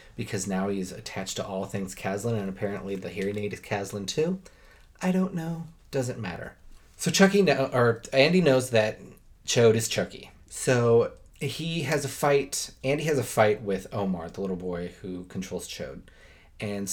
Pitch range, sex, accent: 100-125 Hz, male, American